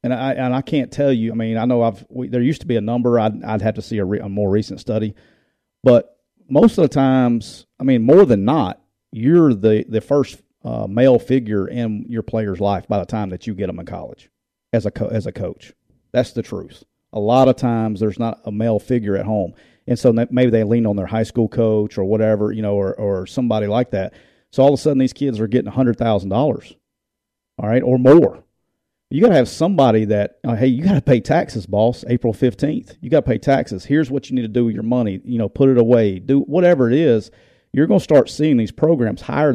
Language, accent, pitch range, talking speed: English, American, 110-130 Hz, 235 wpm